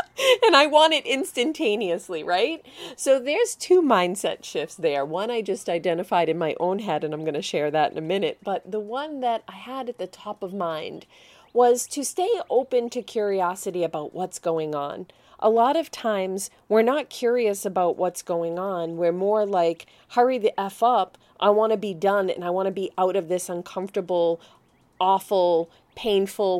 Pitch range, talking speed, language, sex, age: 185-245 Hz, 190 wpm, English, female, 40-59